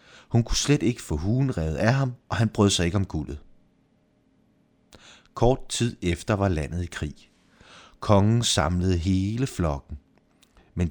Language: Danish